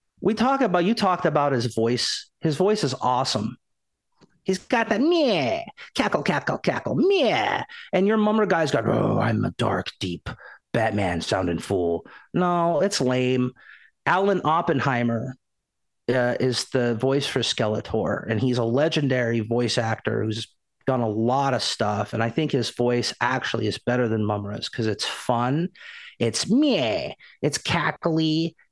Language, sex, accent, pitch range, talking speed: English, male, American, 115-160 Hz, 155 wpm